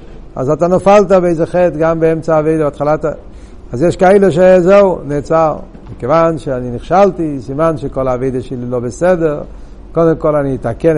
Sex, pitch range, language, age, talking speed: male, 145-200 Hz, Hebrew, 60-79, 155 wpm